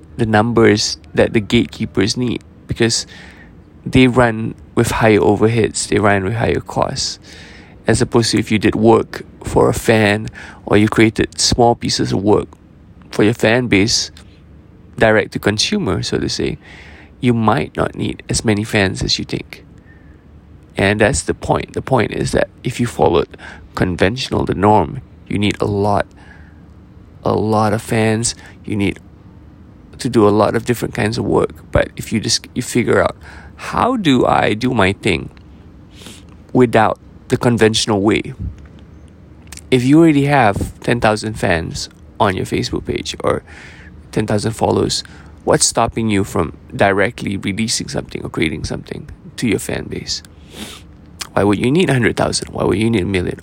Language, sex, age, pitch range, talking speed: English, male, 20-39, 85-115 Hz, 160 wpm